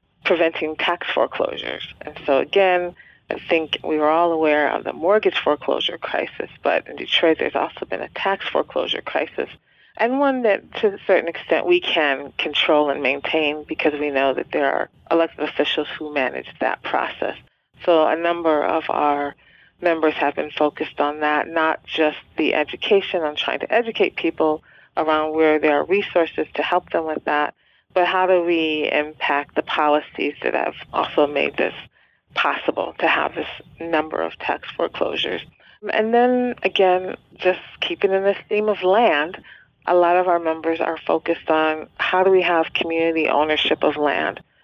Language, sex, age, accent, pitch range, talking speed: English, female, 40-59, American, 155-180 Hz, 170 wpm